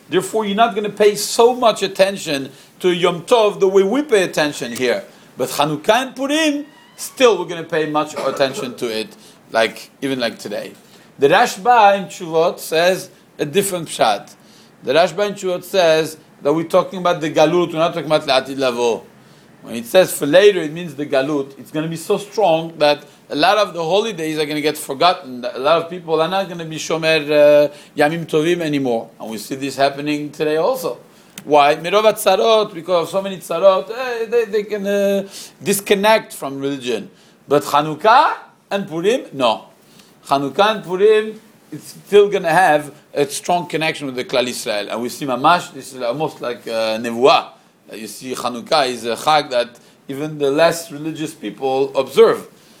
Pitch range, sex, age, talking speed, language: 145-200 Hz, male, 40-59, 190 wpm, English